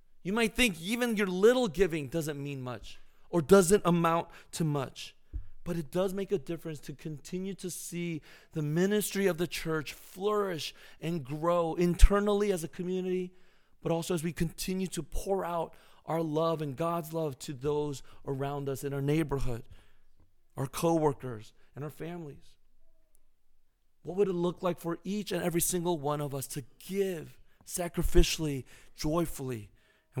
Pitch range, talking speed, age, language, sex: 140-180 Hz, 160 wpm, 30-49, English, male